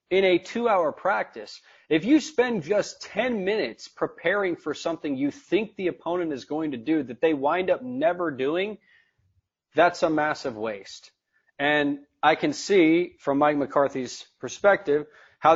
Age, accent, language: 30-49, American, English